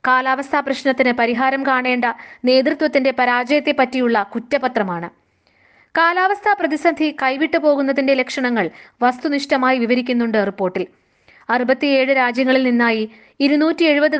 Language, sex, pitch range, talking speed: Malayalam, female, 240-295 Hz, 80 wpm